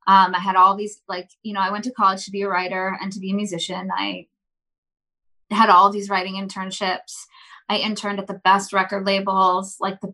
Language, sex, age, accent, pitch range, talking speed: English, female, 20-39, American, 185-200 Hz, 215 wpm